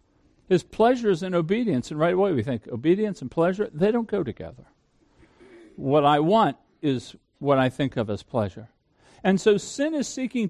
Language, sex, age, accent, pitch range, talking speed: English, male, 50-69, American, 140-215 Hz, 175 wpm